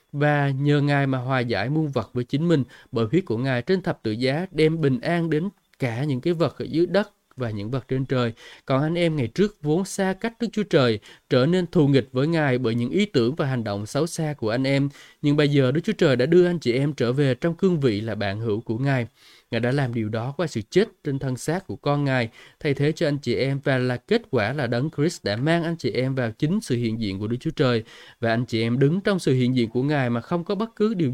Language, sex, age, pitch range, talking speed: Vietnamese, male, 20-39, 120-160 Hz, 275 wpm